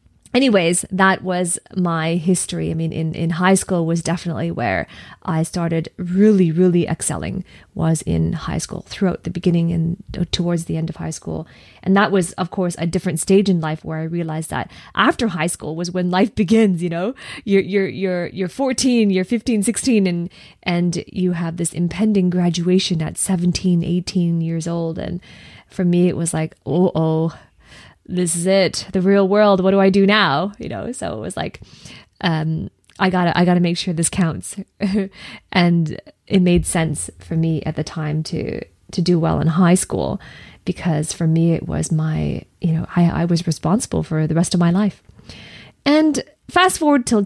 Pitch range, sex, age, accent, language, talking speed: 165-190 Hz, female, 20-39, American, English, 190 wpm